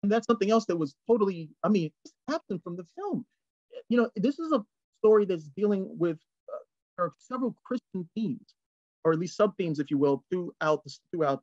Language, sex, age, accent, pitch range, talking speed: English, male, 30-49, American, 170-260 Hz, 185 wpm